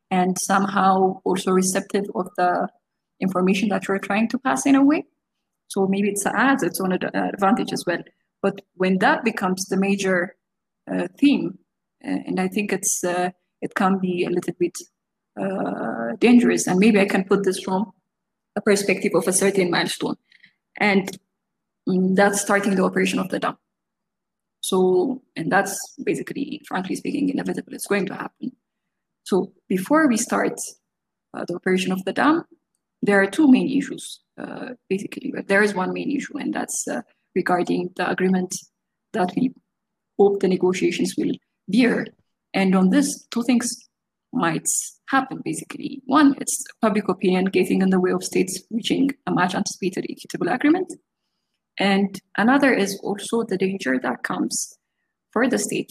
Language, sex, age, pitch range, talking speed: Amharic, female, 20-39, 185-235 Hz, 160 wpm